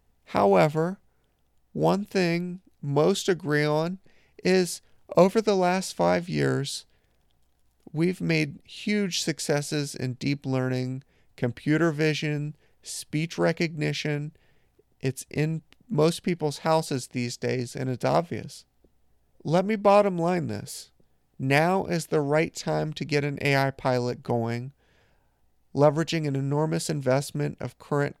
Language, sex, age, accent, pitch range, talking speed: English, male, 40-59, American, 125-170 Hz, 115 wpm